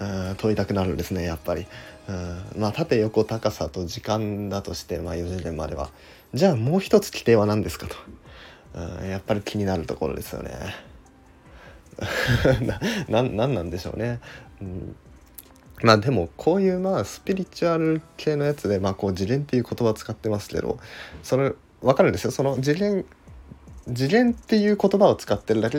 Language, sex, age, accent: Japanese, male, 20-39, native